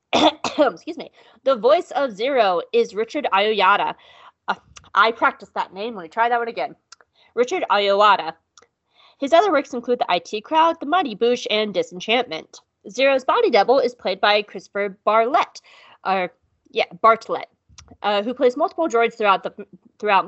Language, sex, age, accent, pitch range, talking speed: English, female, 20-39, American, 205-295 Hz, 155 wpm